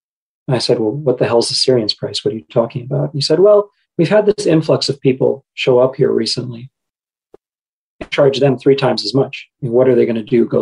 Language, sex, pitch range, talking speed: English, male, 120-140 Hz, 235 wpm